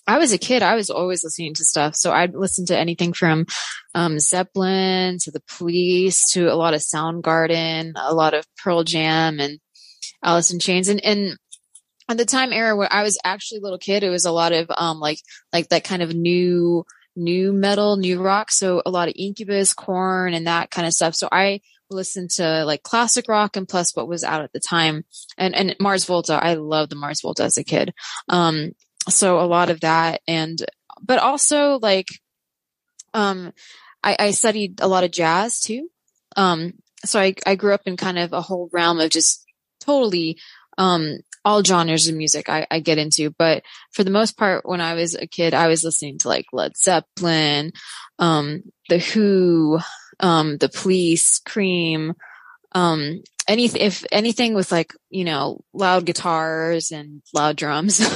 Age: 20-39